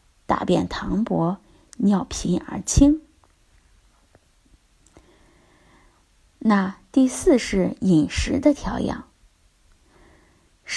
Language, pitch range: Chinese, 195-280 Hz